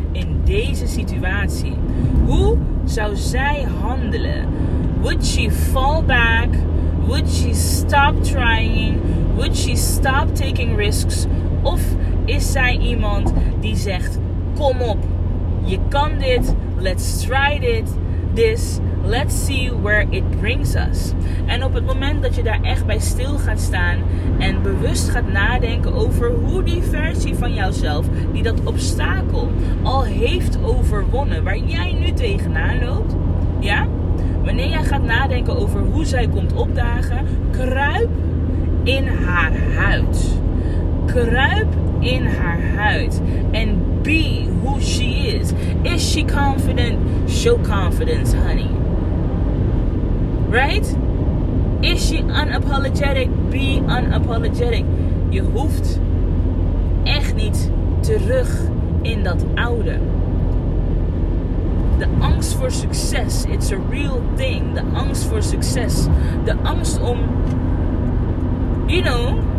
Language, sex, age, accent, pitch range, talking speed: Dutch, female, 20-39, Dutch, 85-90 Hz, 115 wpm